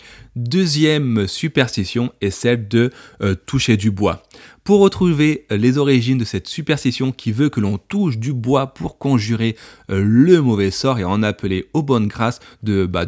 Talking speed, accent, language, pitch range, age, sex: 180 wpm, French, French, 105-135 Hz, 30-49, male